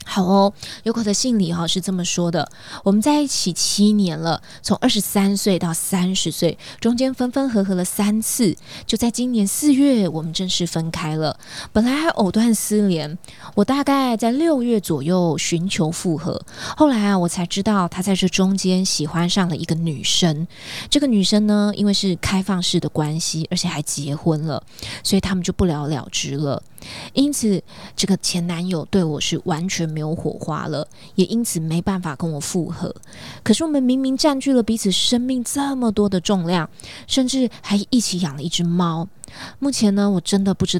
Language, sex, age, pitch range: Chinese, female, 20-39, 170-225 Hz